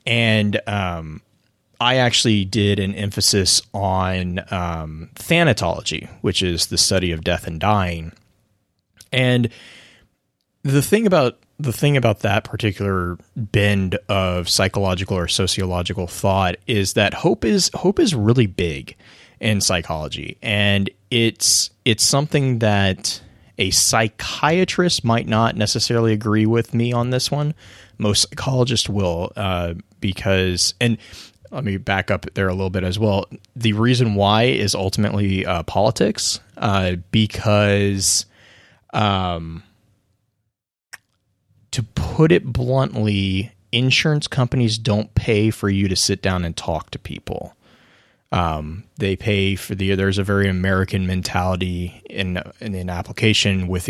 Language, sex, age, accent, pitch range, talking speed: English, male, 30-49, American, 95-115 Hz, 130 wpm